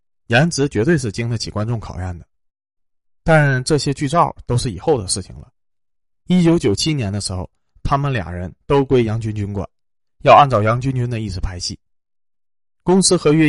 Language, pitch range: Chinese, 95-140 Hz